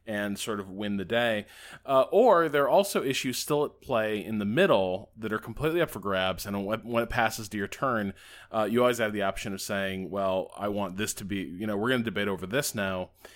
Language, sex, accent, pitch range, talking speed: English, male, American, 100-130 Hz, 245 wpm